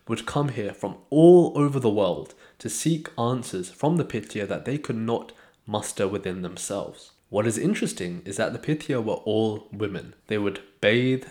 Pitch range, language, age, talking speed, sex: 100-130 Hz, English, 20-39, 180 wpm, male